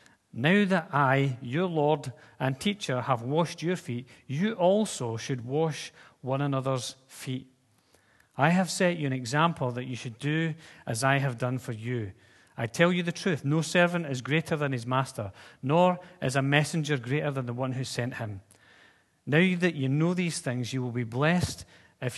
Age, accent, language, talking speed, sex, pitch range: 40-59, British, English, 185 wpm, male, 125-160 Hz